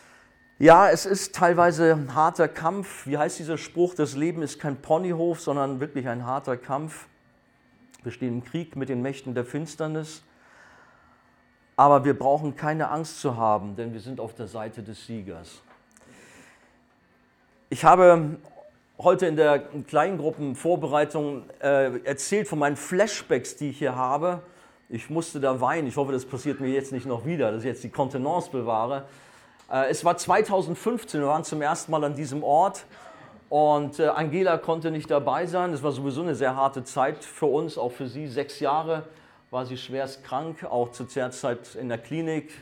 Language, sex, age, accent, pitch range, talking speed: German, male, 40-59, German, 125-155 Hz, 170 wpm